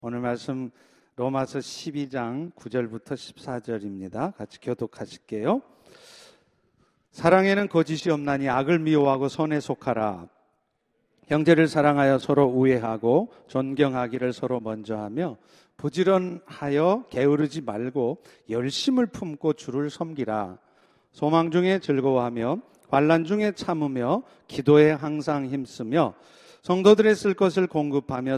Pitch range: 125-160 Hz